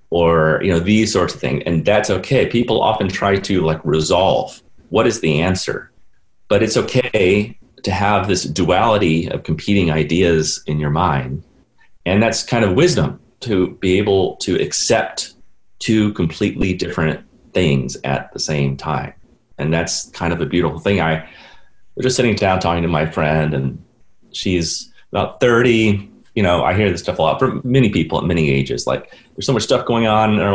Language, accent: English, American